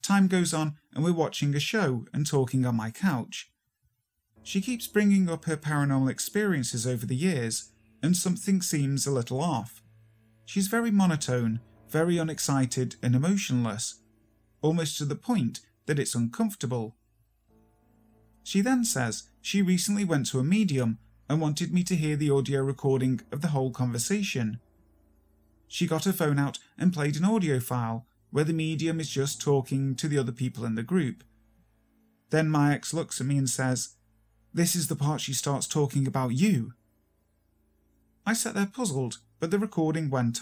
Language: English